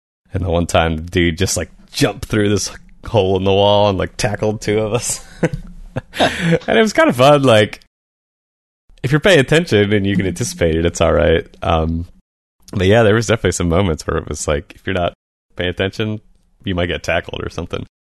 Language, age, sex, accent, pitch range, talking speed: English, 30-49, male, American, 80-95 Hz, 210 wpm